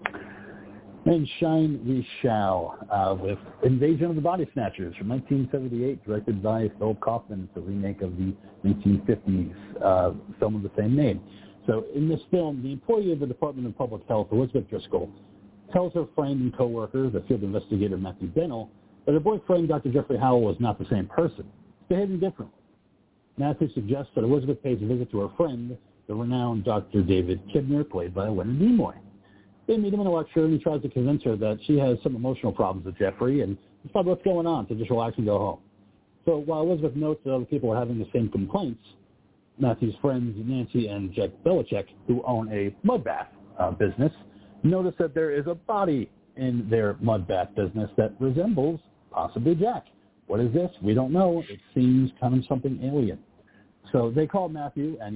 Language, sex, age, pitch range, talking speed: English, male, 60-79, 100-145 Hz, 190 wpm